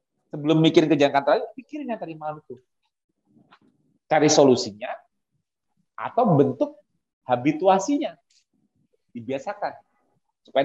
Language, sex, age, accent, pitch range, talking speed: Indonesian, male, 30-49, native, 150-245 Hz, 85 wpm